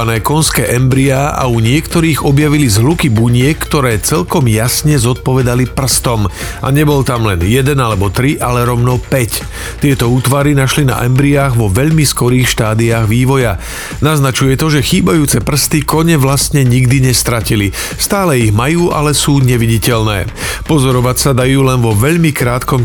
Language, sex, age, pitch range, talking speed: Slovak, male, 40-59, 115-145 Hz, 140 wpm